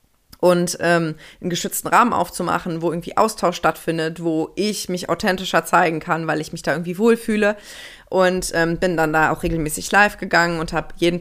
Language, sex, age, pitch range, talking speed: German, female, 20-39, 175-215 Hz, 180 wpm